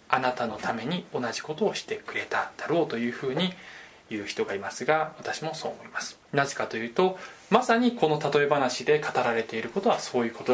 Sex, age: male, 20-39